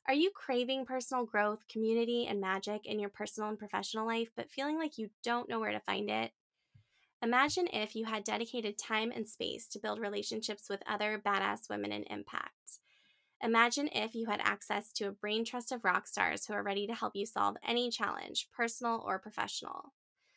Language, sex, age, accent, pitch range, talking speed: English, female, 20-39, American, 205-245 Hz, 190 wpm